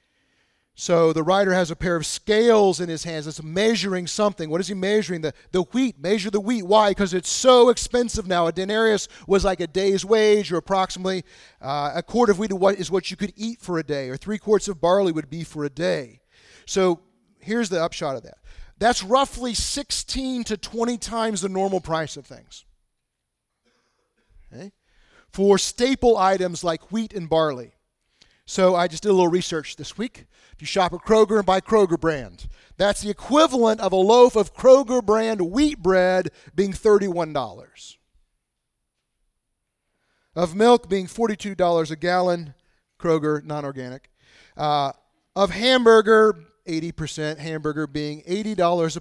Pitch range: 165-215 Hz